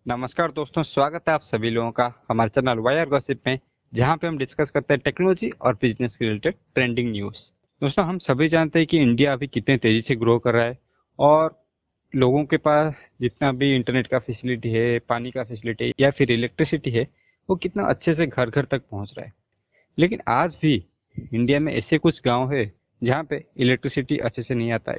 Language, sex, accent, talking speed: Hindi, male, native, 200 wpm